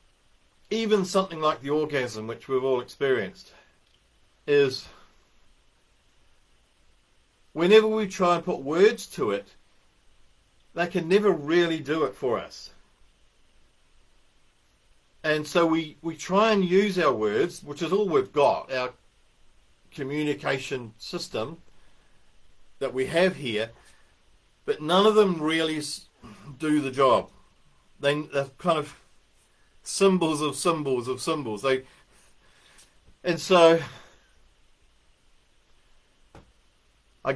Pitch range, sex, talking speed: 135-170 Hz, male, 110 wpm